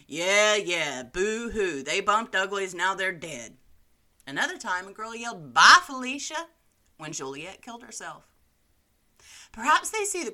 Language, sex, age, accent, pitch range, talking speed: English, female, 30-49, American, 135-225 Hz, 140 wpm